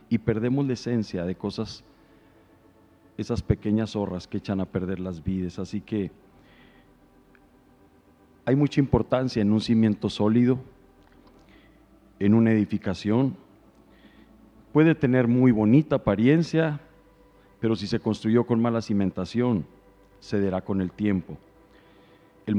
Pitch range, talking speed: 100-120 Hz, 115 wpm